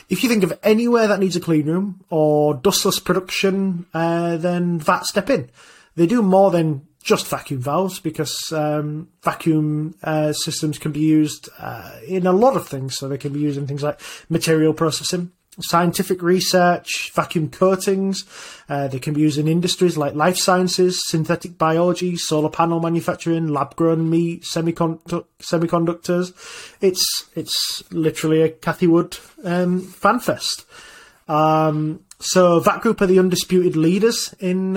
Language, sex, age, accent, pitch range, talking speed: English, male, 30-49, British, 155-185 Hz, 155 wpm